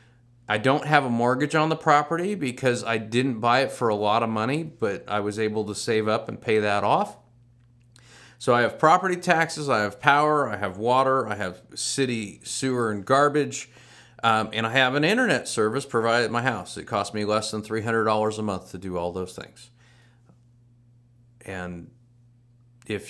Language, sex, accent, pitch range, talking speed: English, male, American, 115-135 Hz, 185 wpm